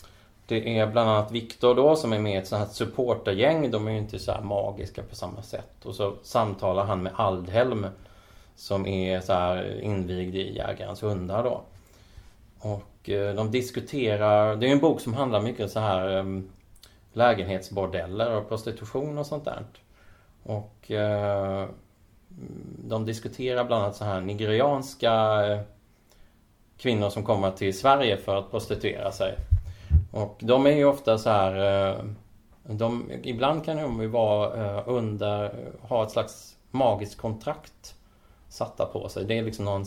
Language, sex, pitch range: Swedish, male, 100-115 Hz